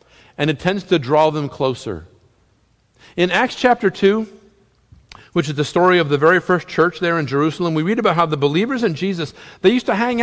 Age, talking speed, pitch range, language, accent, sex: 50-69, 205 wpm, 135-195 Hz, English, American, male